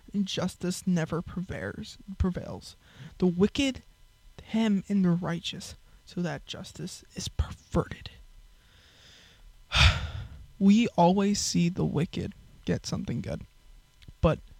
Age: 20-39